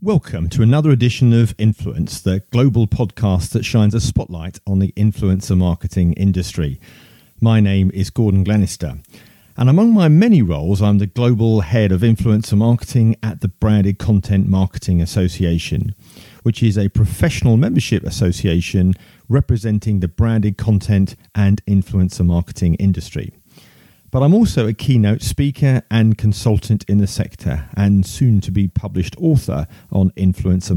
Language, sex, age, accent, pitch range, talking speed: English, male, 40-59, British, 95-115 Hz, 140 wpm